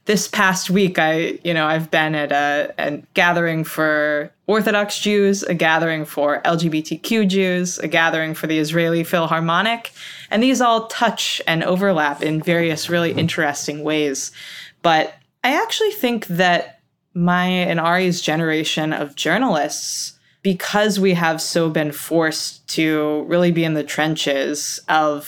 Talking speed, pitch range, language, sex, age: 145 wpm, 150-180 Hz, English, female, 20-39